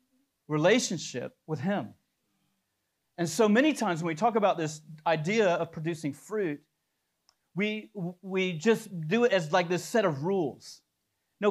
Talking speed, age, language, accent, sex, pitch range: 145 wpm, 40-59, English, American, male, 160-220 Hz